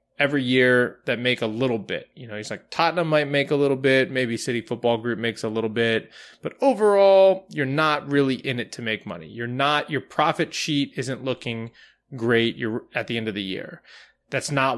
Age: 20-39